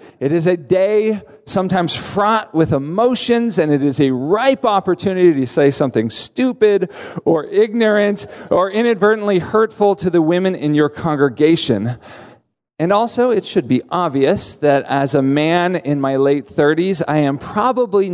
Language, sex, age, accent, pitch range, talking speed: English, male, 40-59, American, 135-205 Hz, 150 wpm